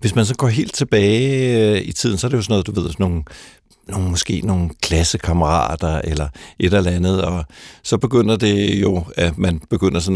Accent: native